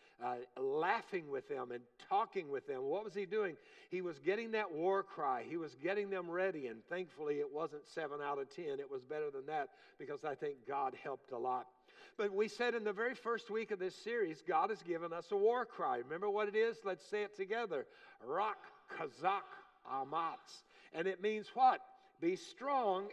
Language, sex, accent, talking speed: English, male, American, 200 wpm